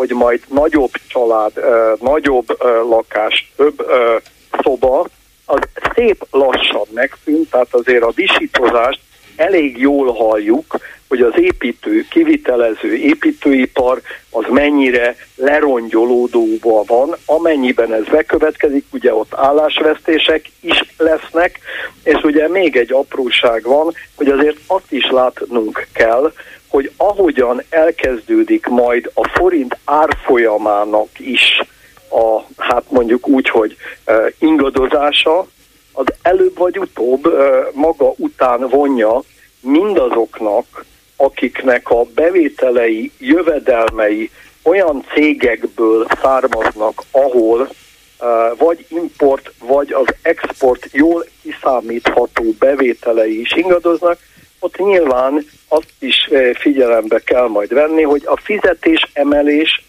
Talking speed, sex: 100 wpm, male